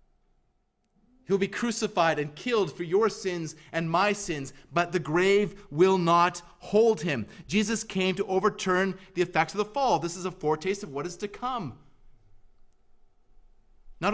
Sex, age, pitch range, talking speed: male, 30-49, 145-185 Hz, 155 wpm